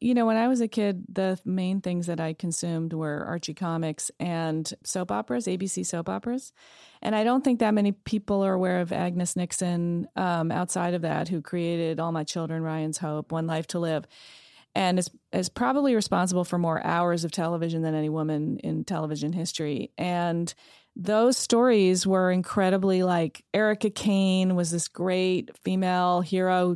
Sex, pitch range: female, 170-195 Hz